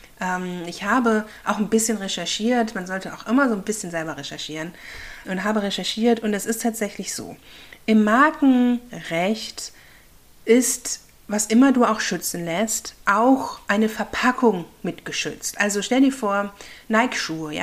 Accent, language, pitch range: German, German, 190-240 Hz